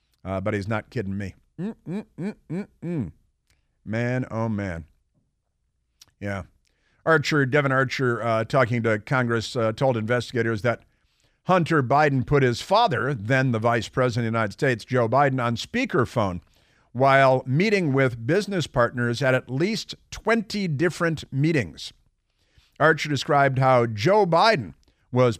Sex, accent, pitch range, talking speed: male, American, 110-145 Hz, 140 wpm